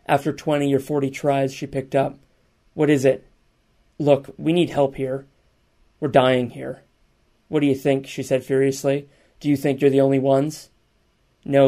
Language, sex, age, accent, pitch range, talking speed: English, male, 30-49, American, 135-145 Hz, 175 wpm